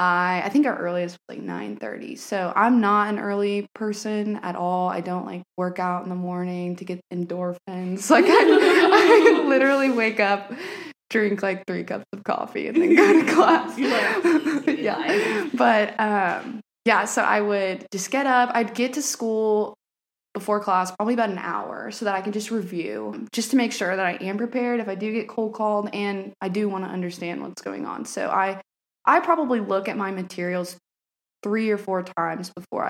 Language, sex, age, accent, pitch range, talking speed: English, female, 20-39, American, 180-225 Hz, 190 wpm